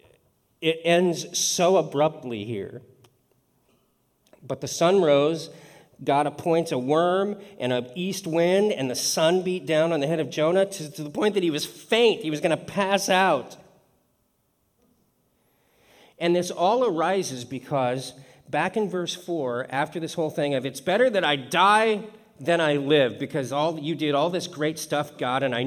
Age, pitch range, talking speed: 40-59, 135-195 Hz, 175 wpm